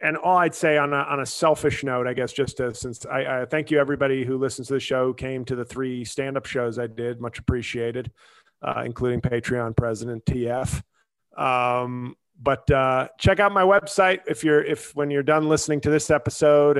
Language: English